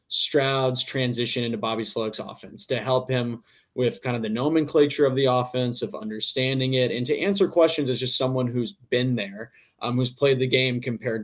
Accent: American